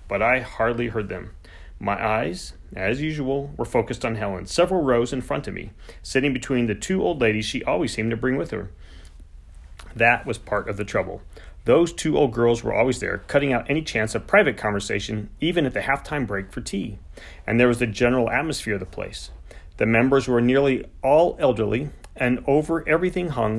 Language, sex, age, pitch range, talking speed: English, male, 40-59, 100-135 Hz, 200 wpm